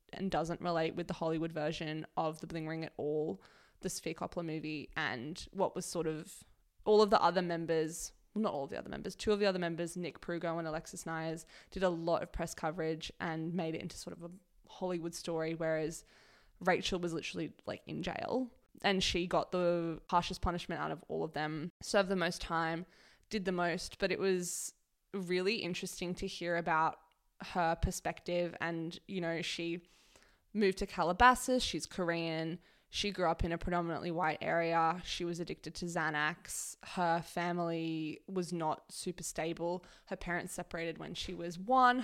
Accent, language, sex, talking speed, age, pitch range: Australian, English, female, 185 wpm, 20-39, 165-185 Hz